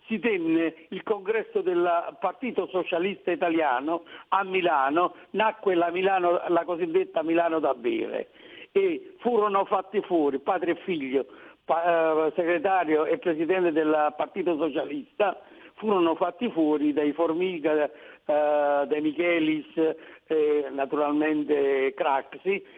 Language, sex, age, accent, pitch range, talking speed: Italian, male, 60-79, native, 155-215 Hz, 110 wpm